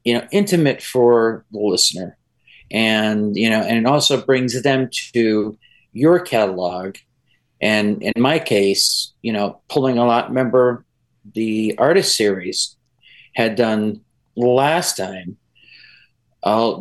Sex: male